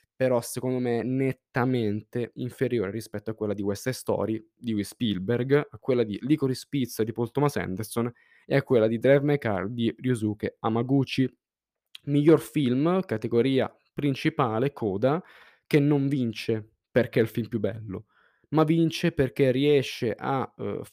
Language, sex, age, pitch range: Italian, male, 10-29, 110-135 Hz